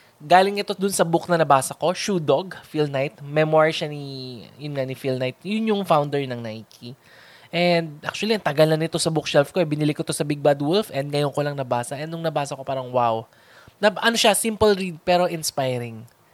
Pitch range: 135-170 Hz